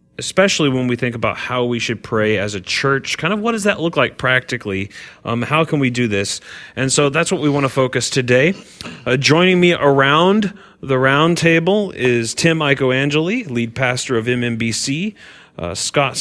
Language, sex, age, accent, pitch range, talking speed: English, male, 30-49, American, 110-145 Hz, 185 wpm